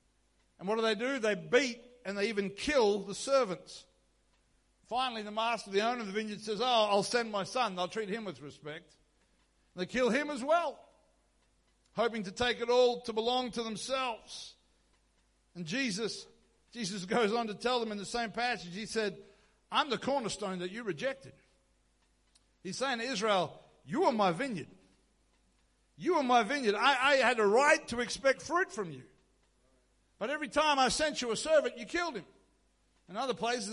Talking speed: 185 wpm